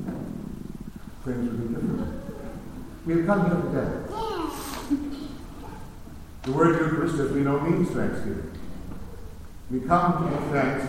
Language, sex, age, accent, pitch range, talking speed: English, male, 60-79, American, 115-170 Hz, 105 wpm